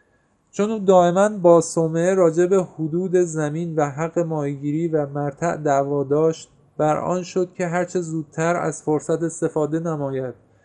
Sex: male